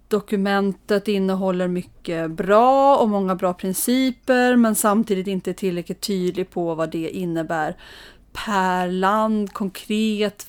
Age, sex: 30-49, female